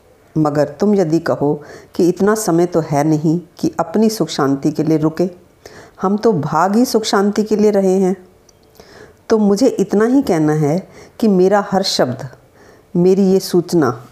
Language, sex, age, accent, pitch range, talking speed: Hindi, female, 50-69, native, 150-200 Hz, 170 wpm